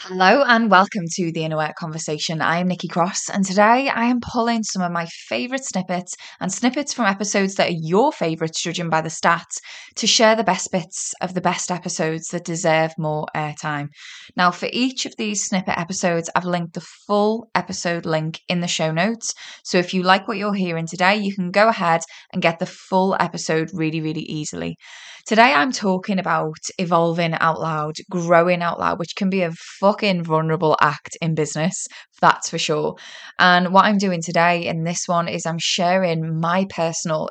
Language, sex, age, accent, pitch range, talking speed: English, female, 20-39, British, 165-195 Hz, 190 wpm